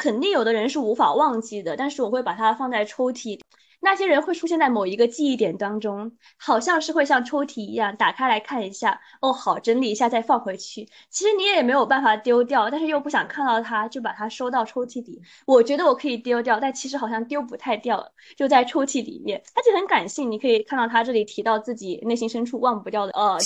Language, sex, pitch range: Chinese, female, 225-290 Hz